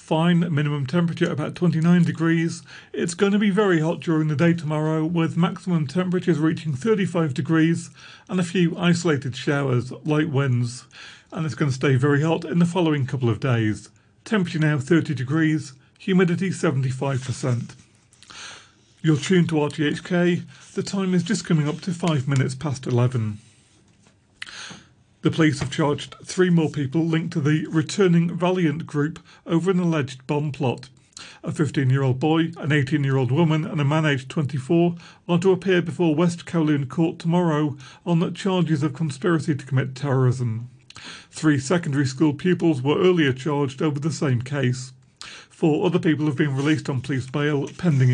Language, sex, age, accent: English, male, 40-59, British